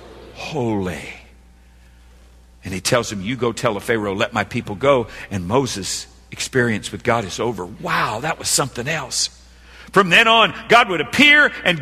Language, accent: English, American